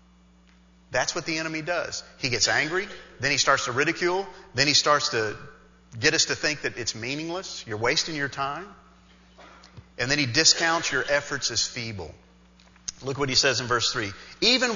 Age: 40-59